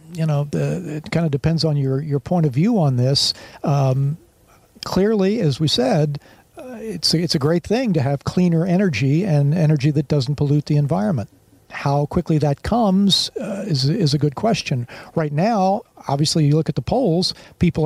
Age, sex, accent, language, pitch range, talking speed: 50-69, male, American, English, 140-165 Hz, 190 wpm